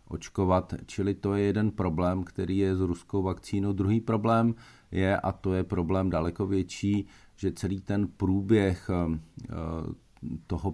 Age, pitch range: 40-59, 80-90 Hz